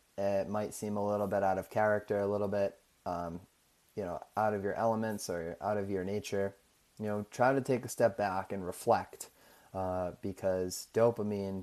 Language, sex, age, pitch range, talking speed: English, male, 20-39, 90-105 Hz, 190 wpm